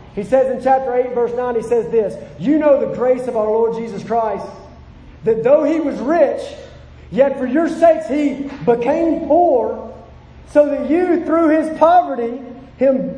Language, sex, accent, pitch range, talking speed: English, male, American, 250-305 Hz, 175 wpm